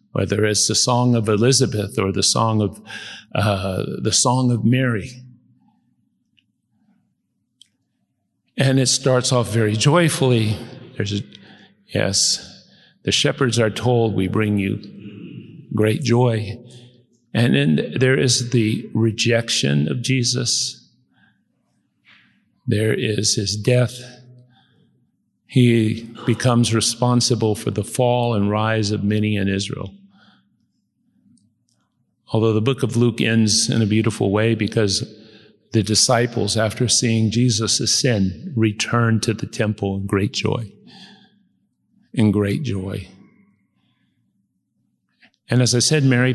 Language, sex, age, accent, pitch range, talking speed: English, male, 50-69, American, 110-125 Hz, 115 wpm